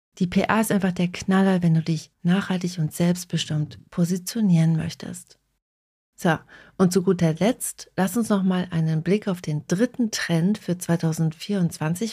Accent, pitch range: German, 170-205 Hz